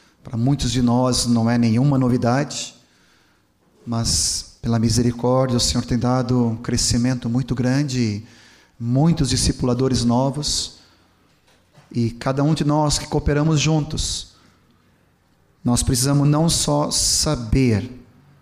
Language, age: Portuguese, 30-49